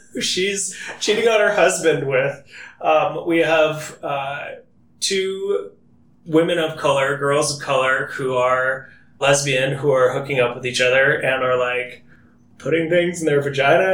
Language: English